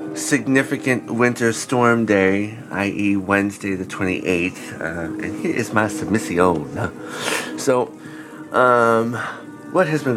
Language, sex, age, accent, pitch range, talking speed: English, male, 30-49, American, 90-110 Hz, 110 wpm